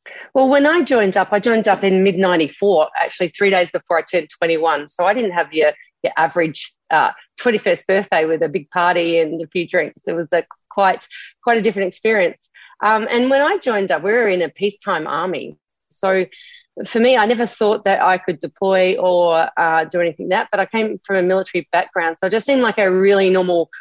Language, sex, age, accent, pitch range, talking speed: English, female, 30-49, Australian, 165-210 Hz, 220 wpm